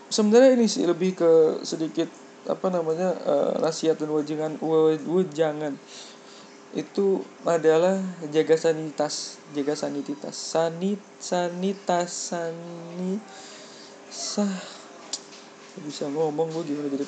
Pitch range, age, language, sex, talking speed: 160-210 Hz, 20-39, Indonesian, male, 100 wpm